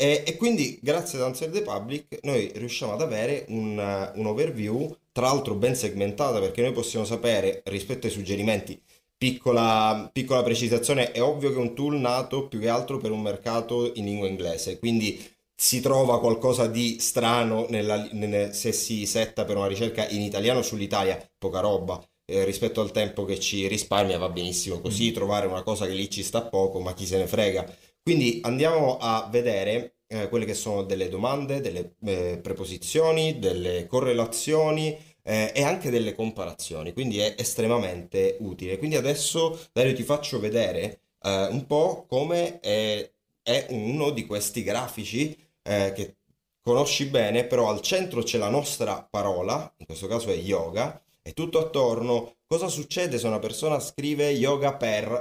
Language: Italian